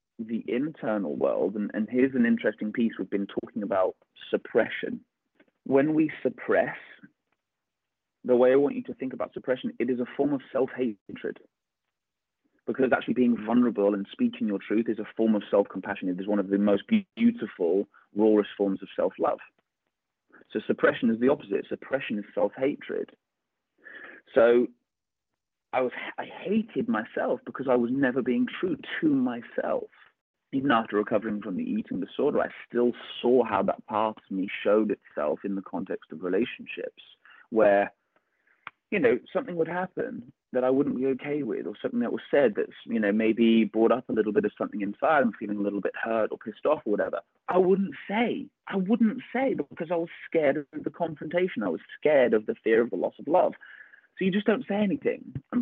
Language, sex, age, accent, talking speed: English, male, 30-49, British, 185 wpm